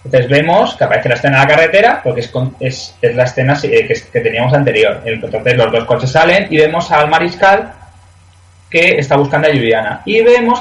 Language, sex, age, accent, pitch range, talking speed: Spanish, male, 20-39, Spanish, 120-170 Hz, 210 wpm